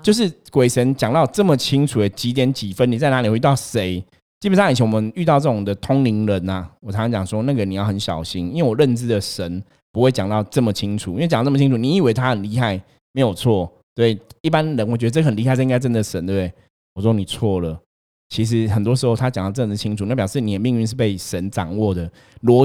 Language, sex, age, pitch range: Chinese, male, 20-39, 110-150 Hz